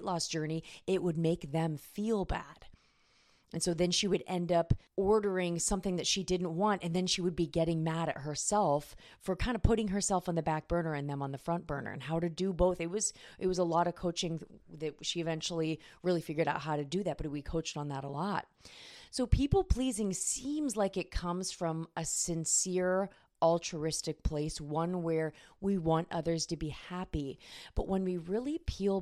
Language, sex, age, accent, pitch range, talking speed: English, female, 30-49, American, 150-180 Hz, 205 wpm